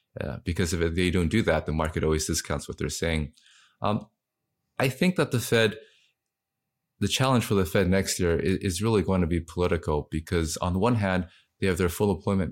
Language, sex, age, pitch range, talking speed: English, male, 20-39, 80-95 Hz, 210 wpm